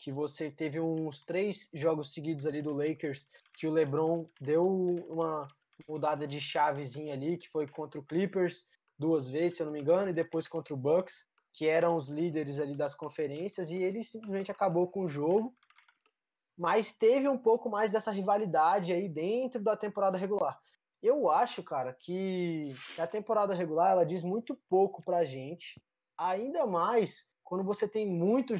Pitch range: 155-210 Hz